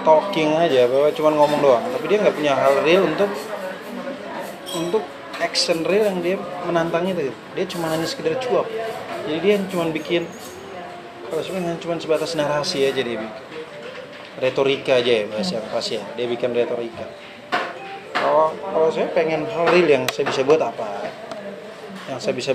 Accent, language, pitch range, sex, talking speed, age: native, Indonesian, 125-175 Hz, male, 150 wpm, 20-39